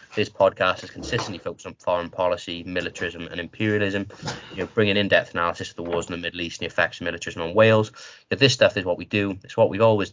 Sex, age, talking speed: male, 20-39, 250 wpm